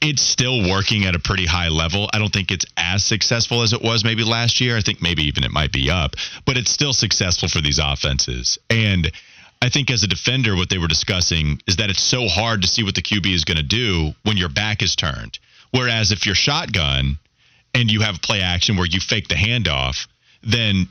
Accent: American